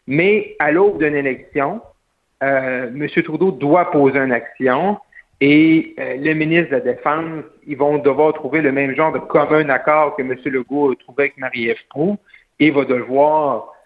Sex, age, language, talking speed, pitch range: male, 50-69, French, 175 wpm, 135-180 Hz